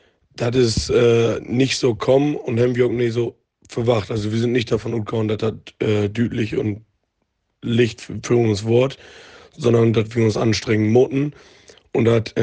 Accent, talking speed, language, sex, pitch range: German, 170 wpm, German, male, 110-125 Hz